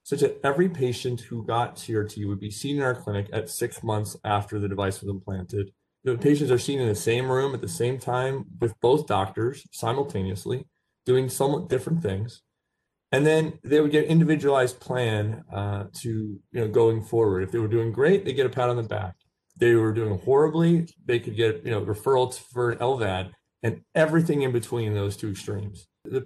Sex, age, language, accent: male, 30-49, English, American